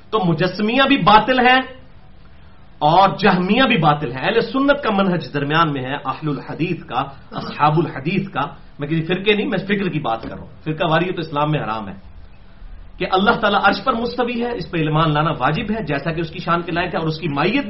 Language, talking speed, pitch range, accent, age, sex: English, 220 wpm, 160-235 Hz, Indian, 40-59, male